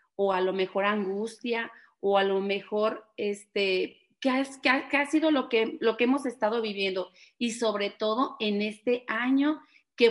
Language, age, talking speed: Spanish, 40-59, 185 wpm